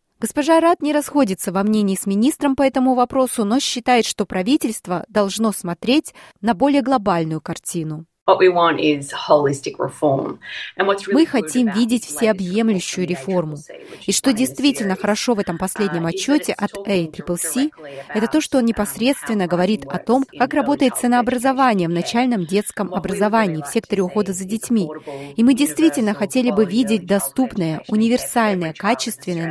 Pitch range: 180-255 Hz